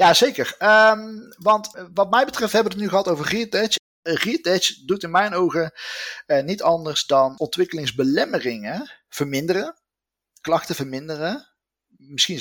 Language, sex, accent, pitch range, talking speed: Dutch, male, Dutch, 135-200 Hz, 130 wpm